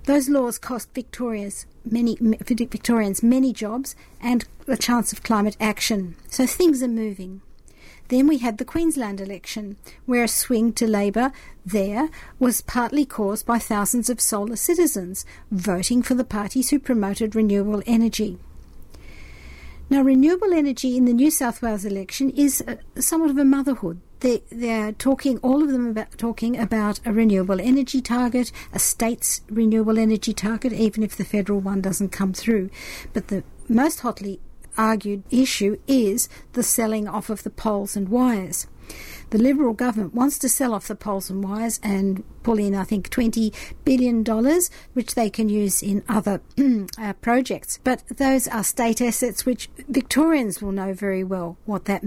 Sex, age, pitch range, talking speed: female, 60-79, 200-250 Hz, 160 wpm